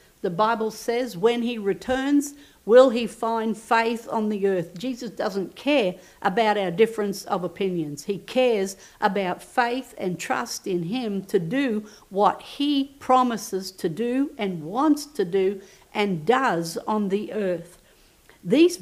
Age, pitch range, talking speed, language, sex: 60-79, 195-240 Hz, 145 wpm, English, female